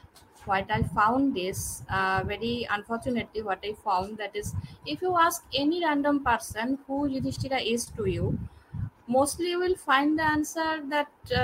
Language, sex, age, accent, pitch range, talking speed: Hindi, female, 20-39, native, 175-220 Hz, 155 wpm